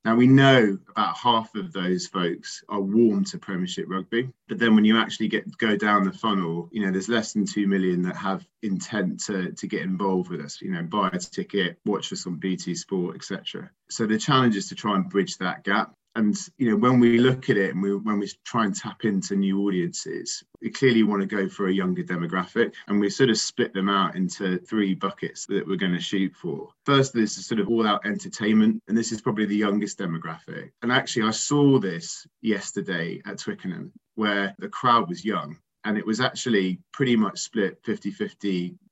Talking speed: 215 wpm